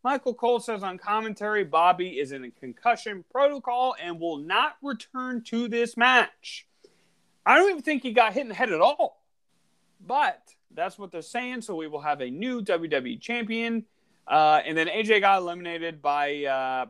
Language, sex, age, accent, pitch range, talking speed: English, male, 30-49, American, 160-245 Hz, 180 wpm